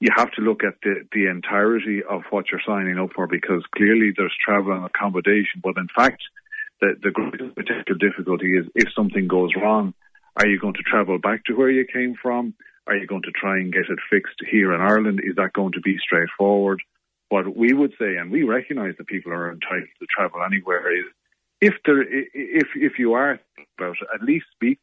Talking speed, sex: 210 wpm, male